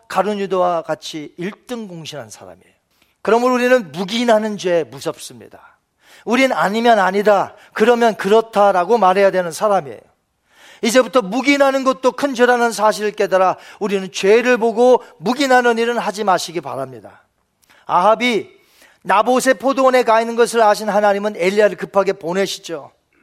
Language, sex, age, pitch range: Korean, male, 40-59, 195-265 Hz